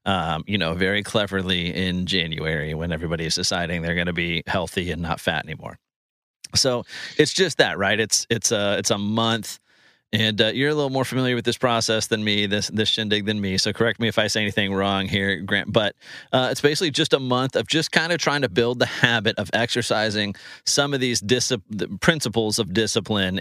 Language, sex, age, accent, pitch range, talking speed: English, male, 30-49, American, 90-115 Hz, 215 wpm